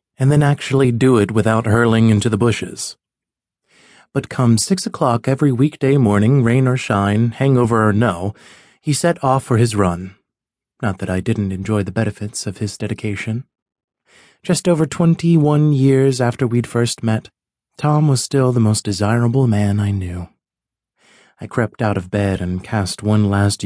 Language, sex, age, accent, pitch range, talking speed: English, male, 30-49, American, 105-130 Hz, 165 wpm